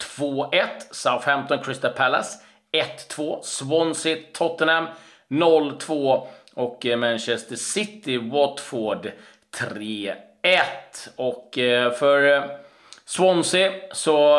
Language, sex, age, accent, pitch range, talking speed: Swedish, male, 30-49, native, 115-140 Hz, 65 wpm